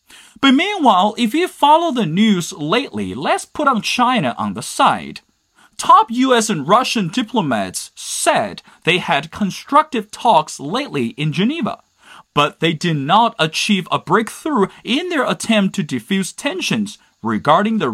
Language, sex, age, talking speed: English, male, 30-49, 145 wpm